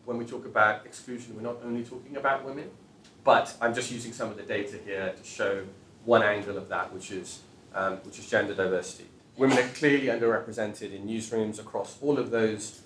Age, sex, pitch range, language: 30-49, male, 105-125 Hz, English